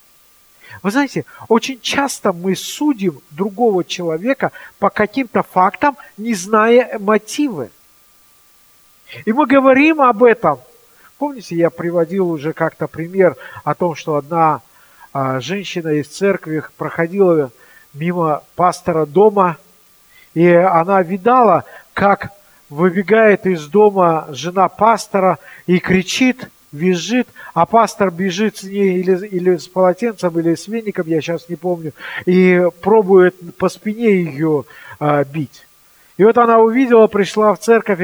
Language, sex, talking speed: Russian, male, 125 wpm